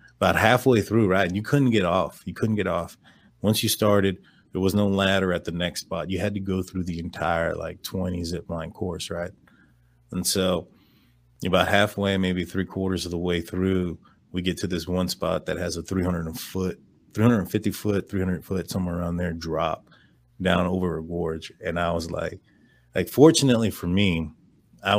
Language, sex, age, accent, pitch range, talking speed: English, male, 30-49, American, 85-100 Hz, 180 wpm